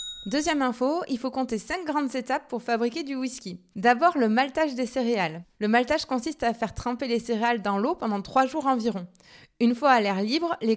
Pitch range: 225-275 Hz